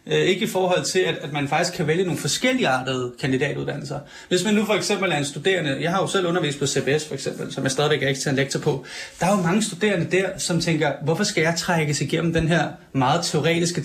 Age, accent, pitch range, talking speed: 30-49, native, 150-180 Hz, 230 wpm